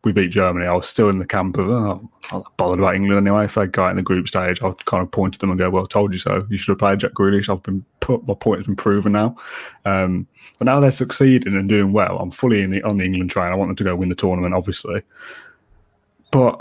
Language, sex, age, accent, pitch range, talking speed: English, male, 20-39, British, 100-125 Hz, 280 wpm